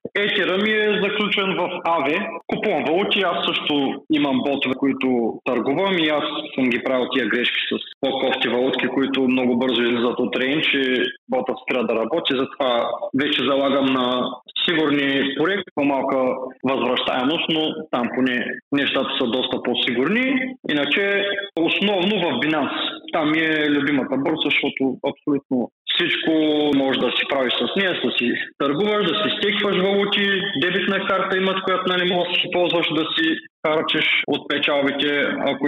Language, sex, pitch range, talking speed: Bulgarian, male, 135-200 Hz, 155 wpm